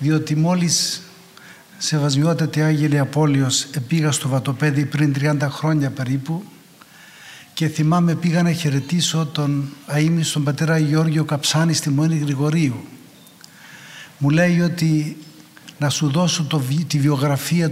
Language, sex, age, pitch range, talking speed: Greek, male, 60-79, 145-175 Hz, 120 wpm